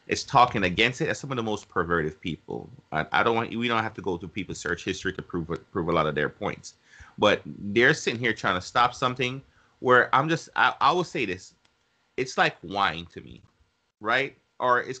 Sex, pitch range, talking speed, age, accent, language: male, 100-130 Hz, 225 wpm, 30-49, American, English